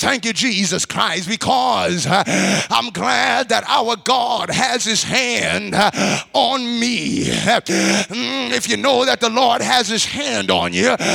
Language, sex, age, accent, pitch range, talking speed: English, male, 30-49, American, 225-260 Hz, 155 wpm